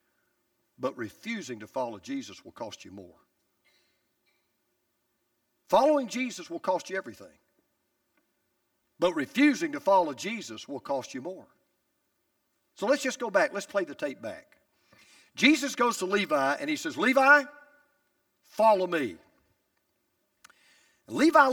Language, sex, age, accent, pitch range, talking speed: English, male, 50-69, American, 190-300 Hz, 125 wpm